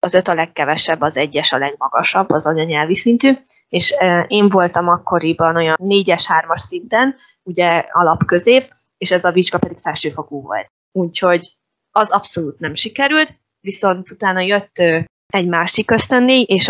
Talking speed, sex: 140 wpm, female